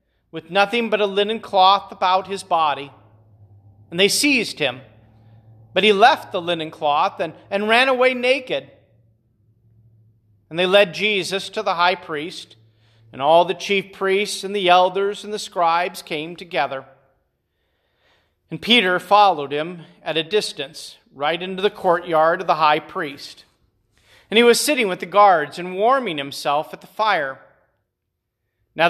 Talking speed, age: 155 wpm, 40-59